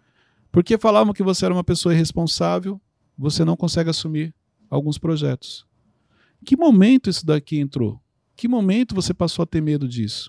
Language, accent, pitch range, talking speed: Portuguese, Brazilian, 150-205 Hz, 170 wpm